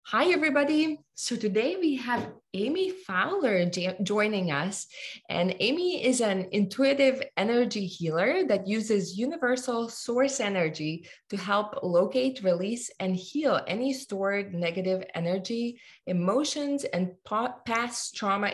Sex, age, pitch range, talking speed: female, 20-39, 185-250 Hz, 115 wpm